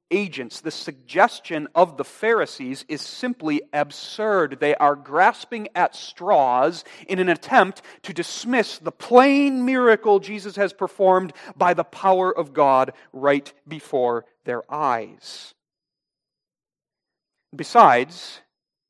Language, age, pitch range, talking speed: English, 40-59, 145-195 Hz, 110 wpm